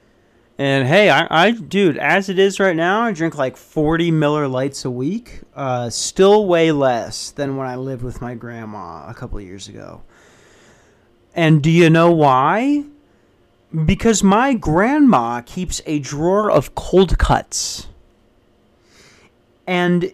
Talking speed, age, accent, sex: 145 wpm, 40-59, American, male